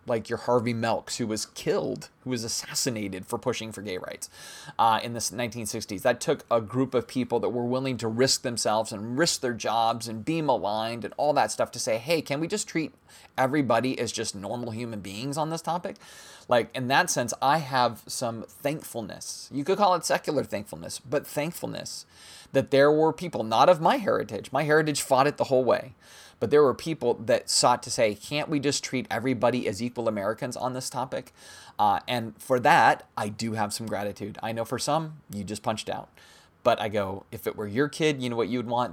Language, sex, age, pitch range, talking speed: English, male, 20-39, 115-150 Hz, 215 wpm